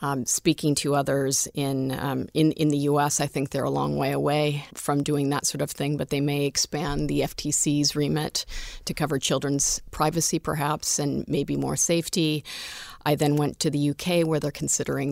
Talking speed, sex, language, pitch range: 190 wpm, female, English, 140-155 Hz